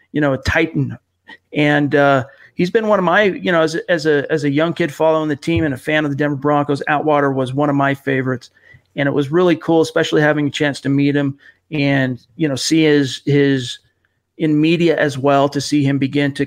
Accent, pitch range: American, 140-155 Hz